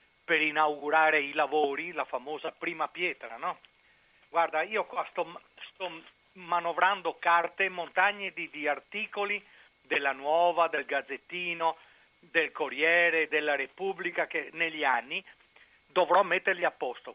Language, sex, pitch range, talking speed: Italian, male, 155-225 Hz, 125 wpm